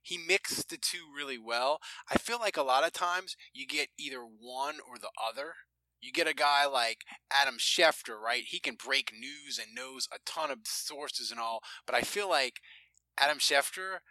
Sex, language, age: male, English, 20-39